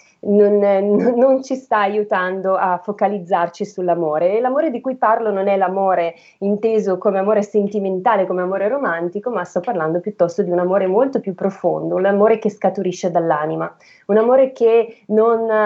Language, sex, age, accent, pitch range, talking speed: Italian, female, 20-39, native, 185-215 Hz, 155 wpm